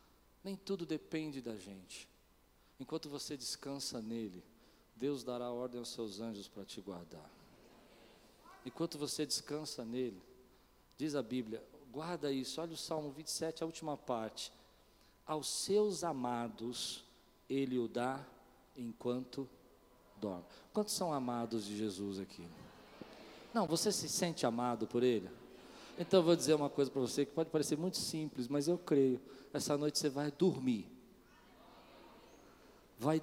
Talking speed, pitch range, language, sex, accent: 140 wpm, 125-155 Hz, Portuguese, male, Brazilian